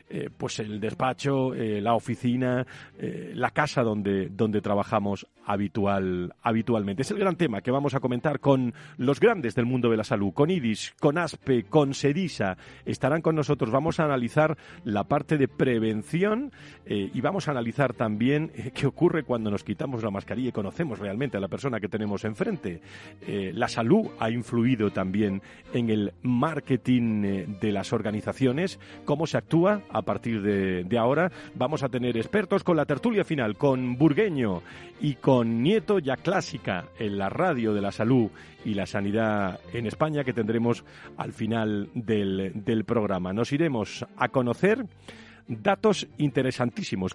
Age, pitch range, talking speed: 40-59, 110-145 Hz, 165 wpm